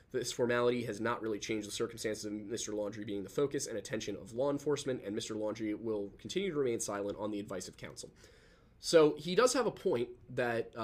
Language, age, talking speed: English, 20-39, 215 wpm